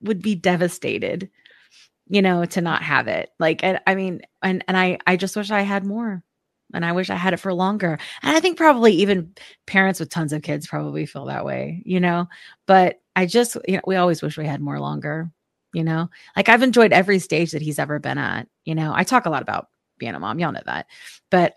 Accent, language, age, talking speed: American, English, 30-49, 235 wpm